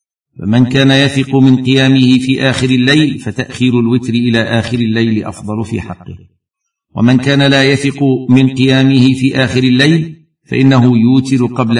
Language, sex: Arabic, male